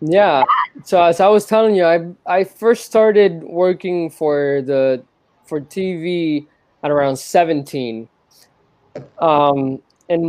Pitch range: 135-180 Hz